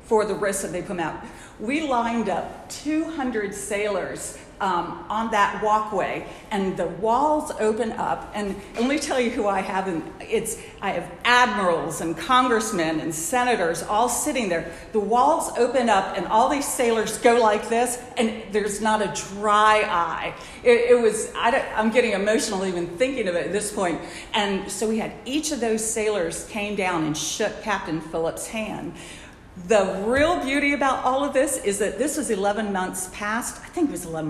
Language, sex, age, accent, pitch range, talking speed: English, female, 50-69, American, 190-245 Hz, 190 wpm